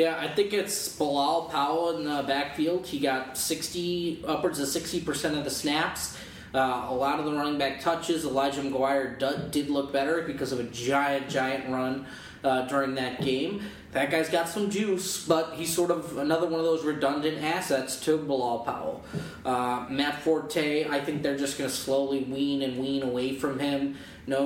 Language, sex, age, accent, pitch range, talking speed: English, male, 20-39, American, 135-160 Hz, 190 wpm